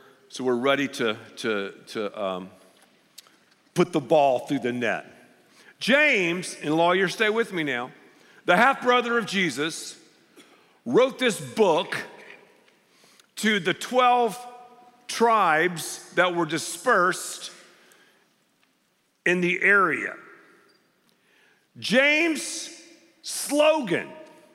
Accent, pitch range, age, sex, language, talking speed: American, 170-255 Hz, 50-69, male, English, 95 wpm